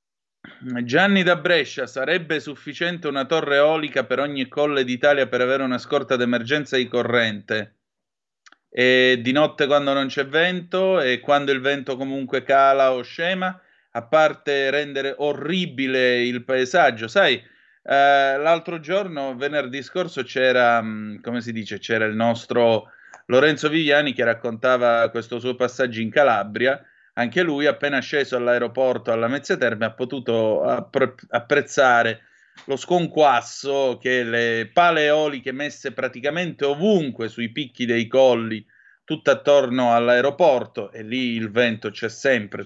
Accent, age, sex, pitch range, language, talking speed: native, 30-49, male, 120-145 Hz, Italian, 135 wpm